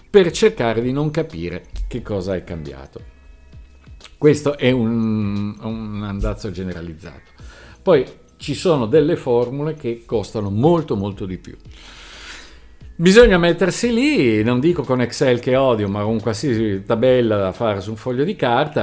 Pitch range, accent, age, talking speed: 100-140 Hz, native, 50-69, 145 wpm